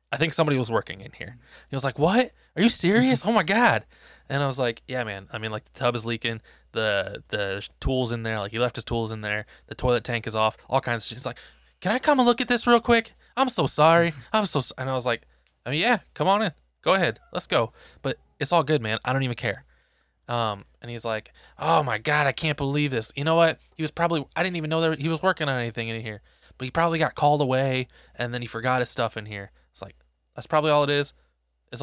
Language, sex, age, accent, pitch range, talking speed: English, male, 20-39, American, 110-150 Hz, 260 wpm